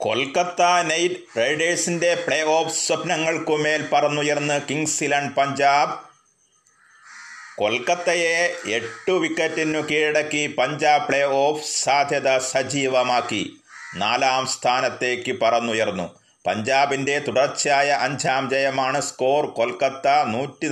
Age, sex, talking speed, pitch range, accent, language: 30-49, male, 80 wpm, 125-150 Hz, native, Malayalam